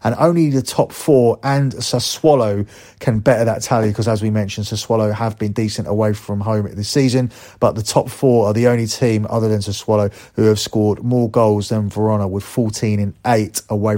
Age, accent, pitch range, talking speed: 30-49, British, 105-130 Hz, 195 wpm